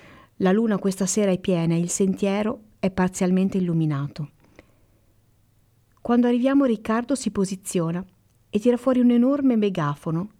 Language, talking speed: Italian, 135 wpm